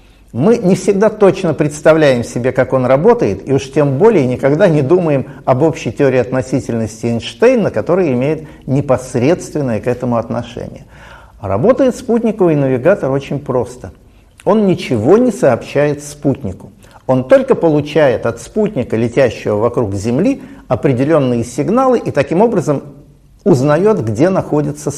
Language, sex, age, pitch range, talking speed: Russian, male, 50-69, 120-170 Hz, 125 wpm